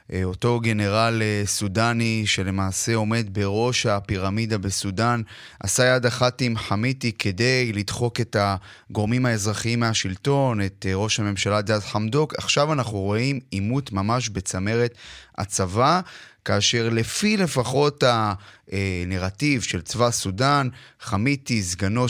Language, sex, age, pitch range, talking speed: Hebrew, male, 30-49, 105-130 Hz, 110 wpm